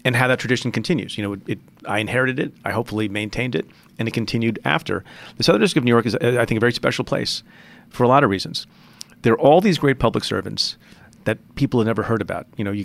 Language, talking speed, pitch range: English, 245 wpm, 105-120 Hz